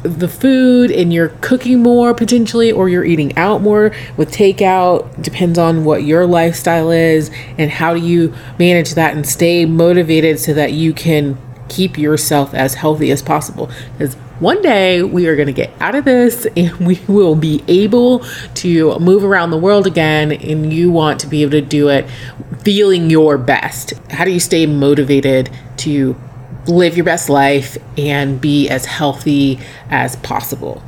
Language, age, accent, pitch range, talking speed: English, 30-49, American, 140-175 Hz, 175 wpm